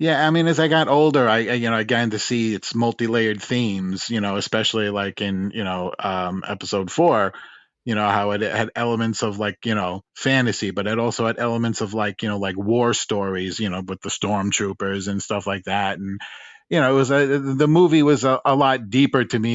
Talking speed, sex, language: 220 wpm, male, English